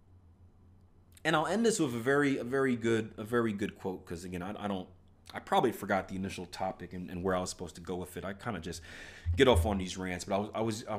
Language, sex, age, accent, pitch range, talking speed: English, male, 30-49, American, 90-110 Hz, 275 wpm